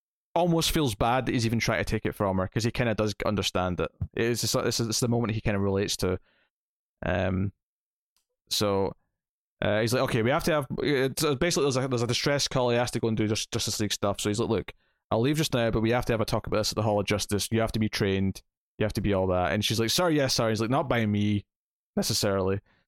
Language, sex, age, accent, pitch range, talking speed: English, male, 20-39, British, 100-130 Hz, 270 wpm